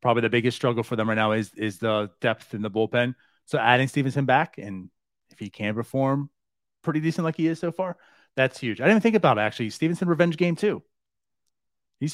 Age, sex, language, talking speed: 30-49, male, English, 220 wpm